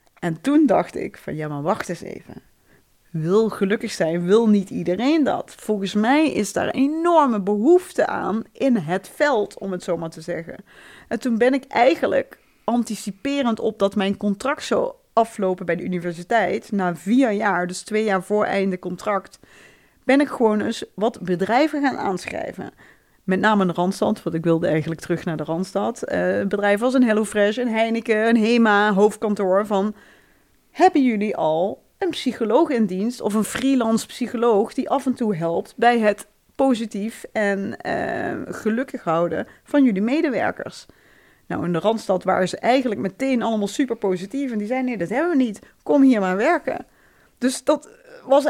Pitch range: 195-260 Hz